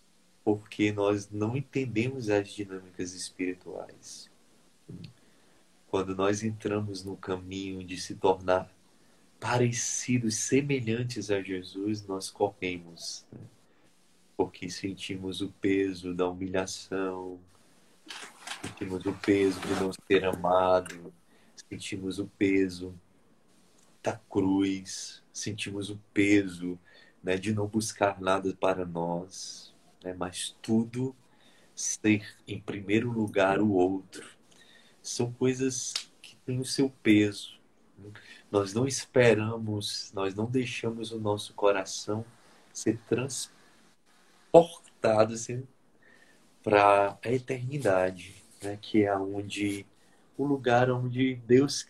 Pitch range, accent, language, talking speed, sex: 95-115 Hz, Brazilian, Portuguese, 105 wpm, male